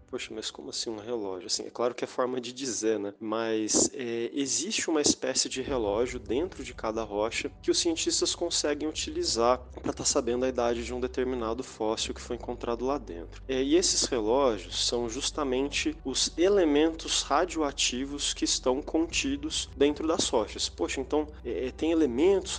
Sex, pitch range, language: male, 115-170 Hz, Portuguese